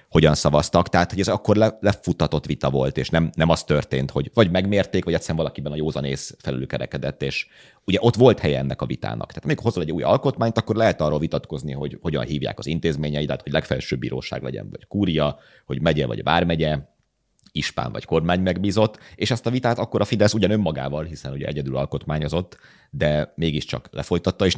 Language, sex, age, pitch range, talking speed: Hungarian, male, 30-49, 70-95 Hz, 195 wpm